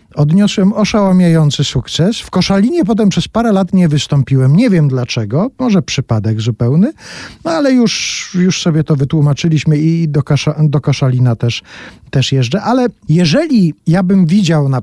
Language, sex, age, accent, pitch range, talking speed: Polish, male, 40-59, native, 135-180 Hz, 155 wpm